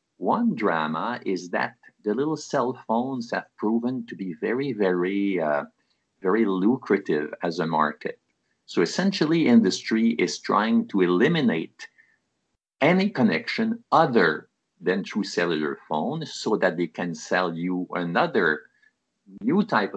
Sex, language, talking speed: male, English, 130 wpm